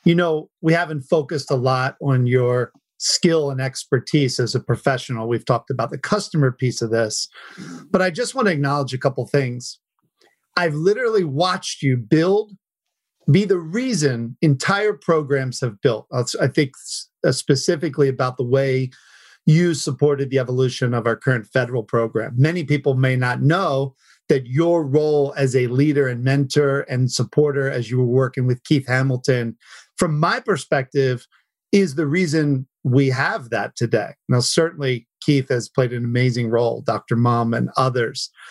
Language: English